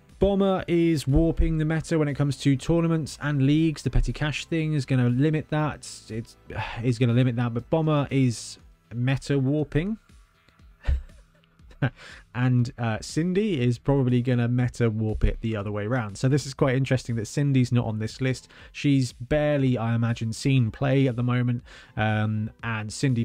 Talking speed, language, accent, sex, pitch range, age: 180 wpm, English, British, male, 110-150 Hz, 20-39